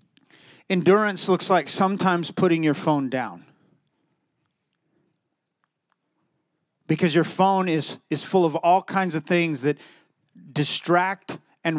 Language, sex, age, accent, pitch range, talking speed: English, male, 30-49, American, 150-185 Hz, 110 wpm